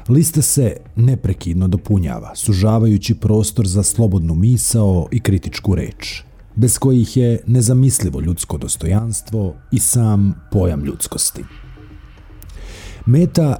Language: Croatian